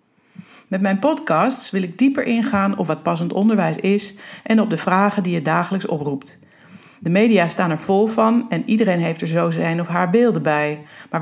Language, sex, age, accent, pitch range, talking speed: Dutch, female, 40-59, Dutch, 170-225 Hz, 200 wpm